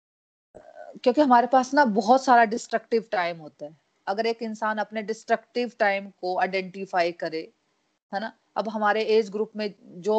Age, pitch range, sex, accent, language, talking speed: 30-49, 175-225 Hz, female, native, Hindi, 155 wpm